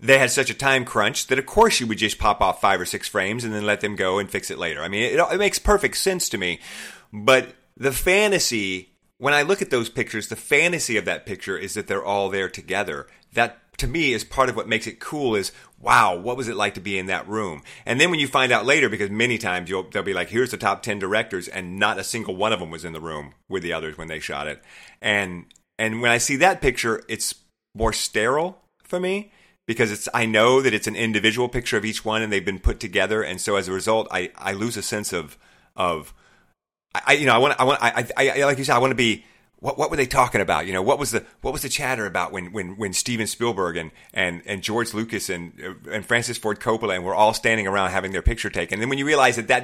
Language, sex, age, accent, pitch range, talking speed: English, male, 40-59, American, 100-130 Hz, 265 wpm